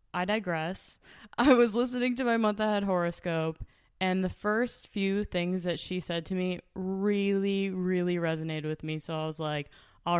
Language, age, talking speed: English, 20-39, 175 wpm